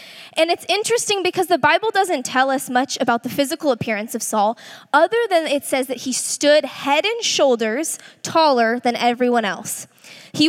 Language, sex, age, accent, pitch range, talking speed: English, female, 10-29, American, 235-300 Hz, 175 wpm